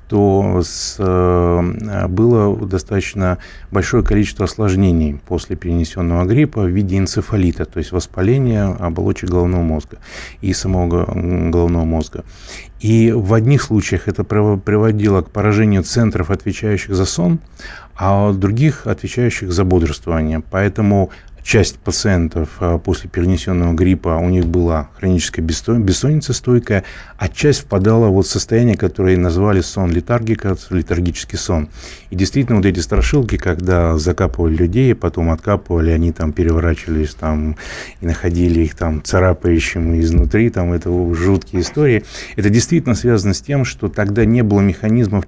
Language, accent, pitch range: Russian, native, 85-105 Hz